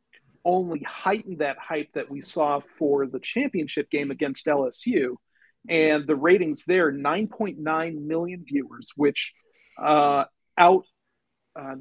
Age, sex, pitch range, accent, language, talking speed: 40-59, male, 150-210 Hz, American, English, 120 wpm